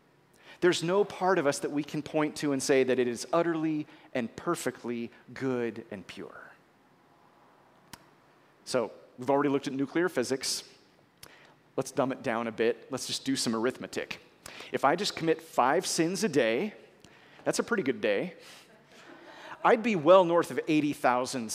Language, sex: English, male